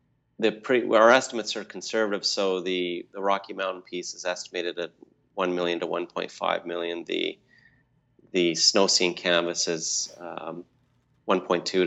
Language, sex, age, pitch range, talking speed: English, male, 30-49, 85-105 Hz, 140 wpm